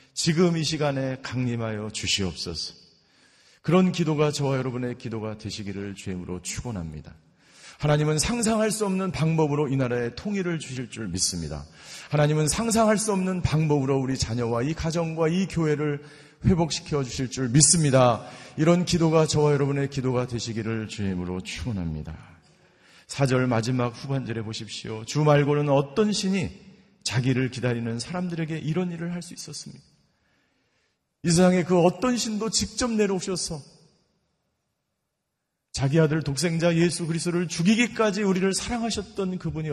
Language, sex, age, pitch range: Korean, male, 40-59, 125-180 Hz